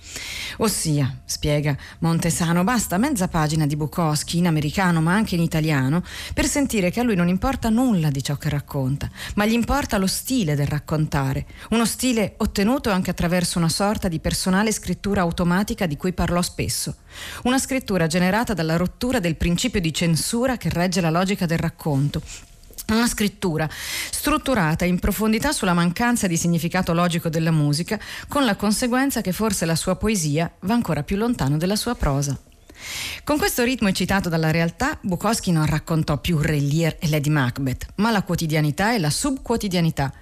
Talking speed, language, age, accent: 165 wpm, Italian, 30-49, native